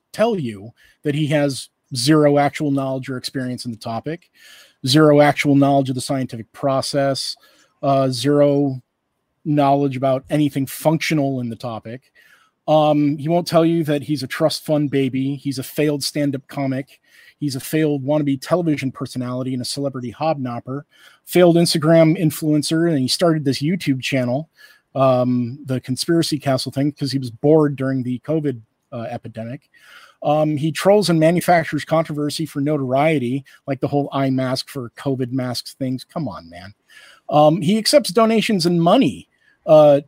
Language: English